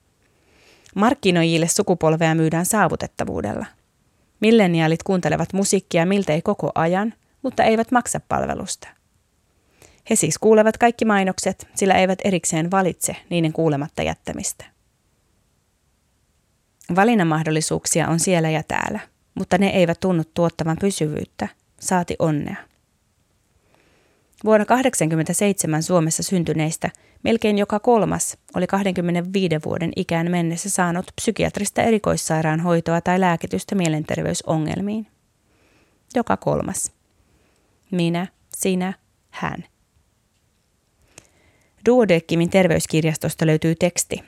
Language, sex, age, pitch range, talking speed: Finnish, female, 30-49, 160-195 Hz, 90 wpm